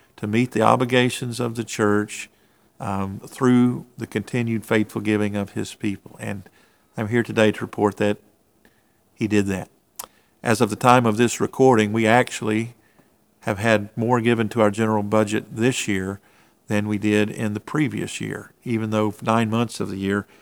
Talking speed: 175 wpm